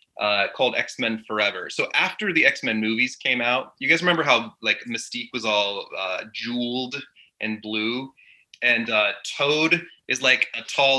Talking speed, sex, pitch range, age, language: 165 wpm, male, 110-150 Hz, 20-39, English